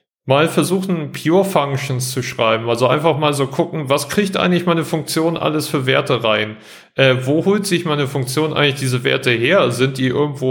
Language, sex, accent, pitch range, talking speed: German, male, German, 125-155 Hz, 190 wpm